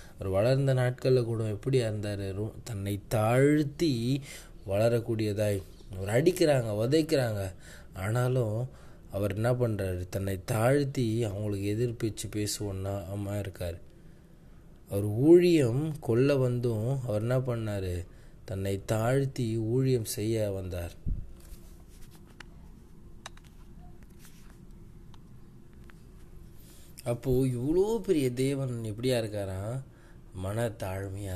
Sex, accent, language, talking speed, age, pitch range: male, native, Tamil, 80 wpm, 20-39, 100-130 Hz